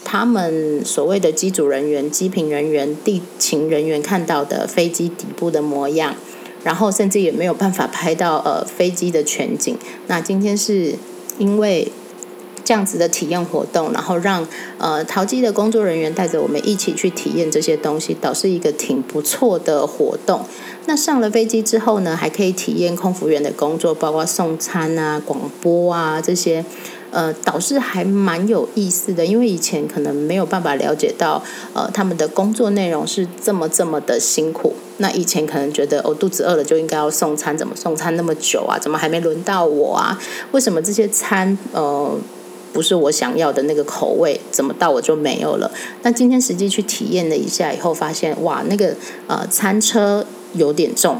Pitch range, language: 155-205 Hz, Chinese